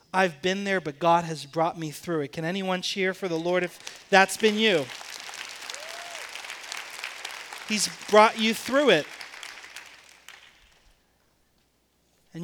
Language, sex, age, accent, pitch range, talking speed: English, male, 30-49, American, 170-235 Hz, 125 wpm